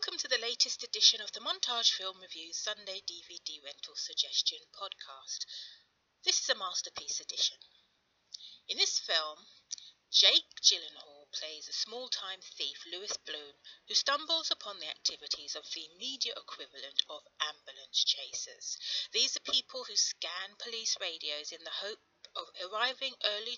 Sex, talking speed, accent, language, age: female, 145 wpm, British, English, 40-59